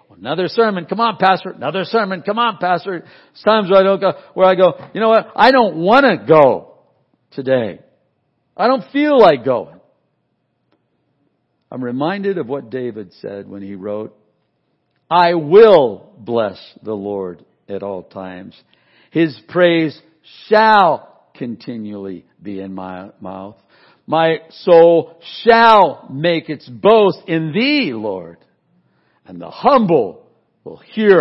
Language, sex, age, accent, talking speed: English, male, 60-79, American, 140 wpm